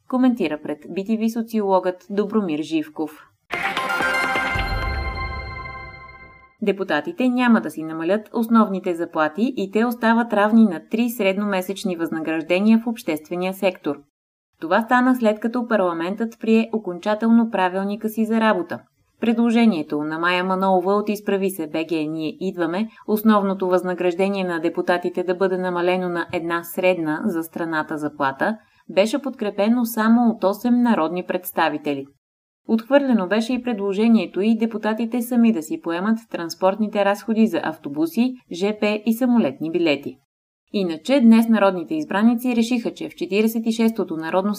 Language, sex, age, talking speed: Bulgarian, female, 20-39, 125 wpm